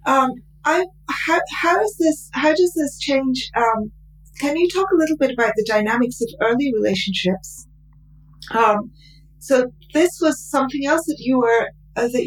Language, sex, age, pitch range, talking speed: English, female, 40-59, 195-255 Hz, 165 wpm